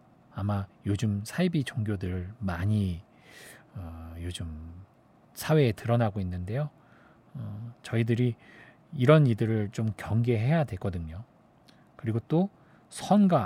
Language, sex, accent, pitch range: Korean, male, native, 105-140 Hz